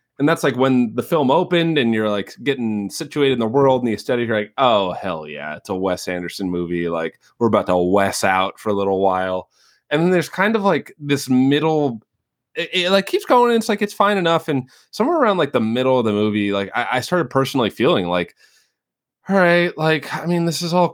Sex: male